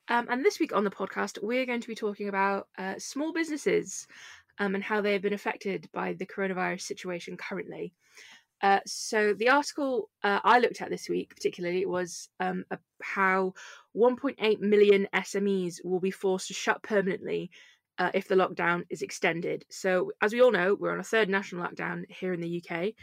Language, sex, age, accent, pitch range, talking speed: English, female, 20-39, British, 185-215 Hz, 190 wpm